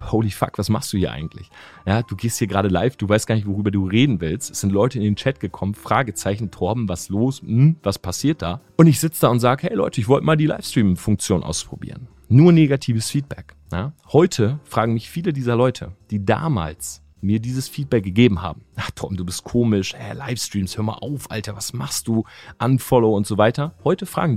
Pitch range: 100-140 Hz